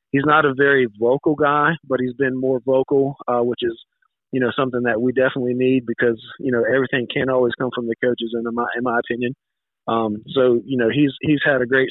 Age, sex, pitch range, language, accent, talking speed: 40-59, male, 125-140 Hz, English, American, 225 wpm